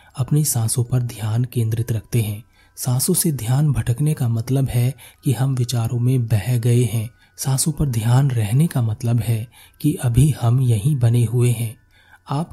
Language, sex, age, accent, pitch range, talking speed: Hindi, male, 30-49, native, 115-135 Hz, 170 wpm